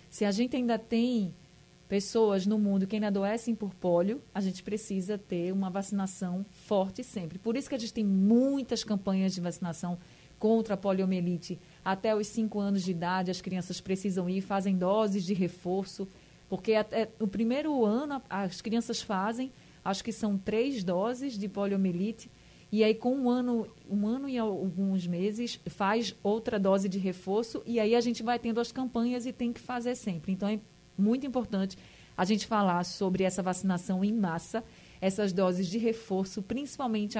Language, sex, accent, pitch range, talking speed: Portuguese, female, Brazilian, 190-230 Hz, 175 wpm